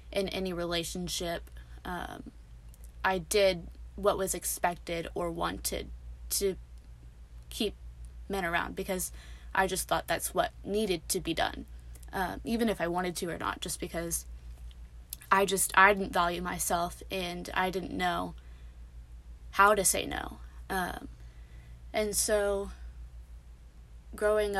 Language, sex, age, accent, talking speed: English, female, 20-39, American, 130 wpm